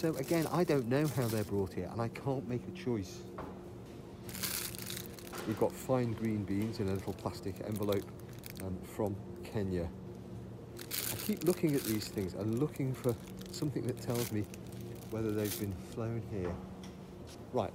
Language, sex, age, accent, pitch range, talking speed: English, male, 40-59, British, 90-115 Hz, 160 wpm